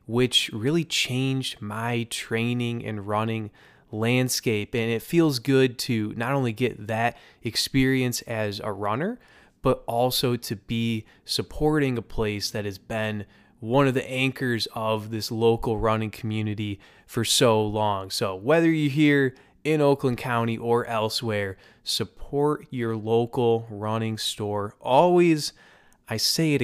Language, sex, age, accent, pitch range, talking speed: English, male, 20-39, American, 110-135 Hz, 135 wpm